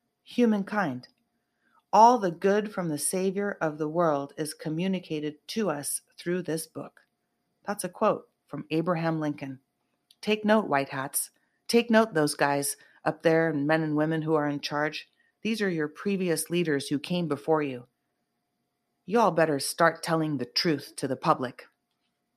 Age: 30-49